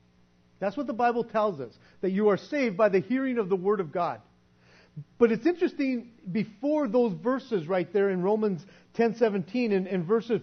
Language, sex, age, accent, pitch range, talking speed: English, male, 40-59, American, 160-230 Hz, 185 wpm